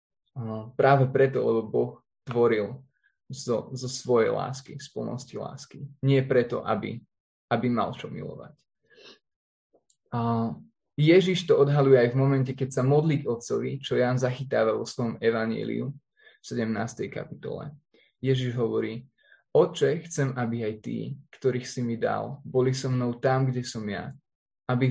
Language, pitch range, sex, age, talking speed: Slovak, 120-140 Hz, male, 20-39, 145 wpm